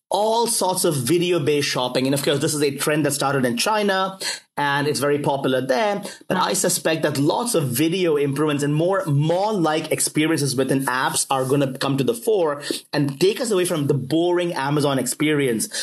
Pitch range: 140-170 Hz